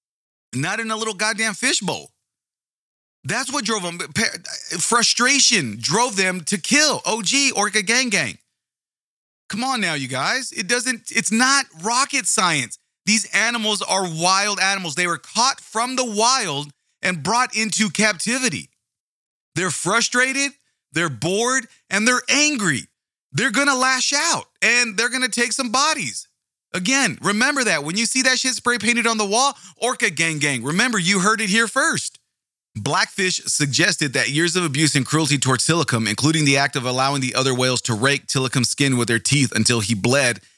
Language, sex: English, male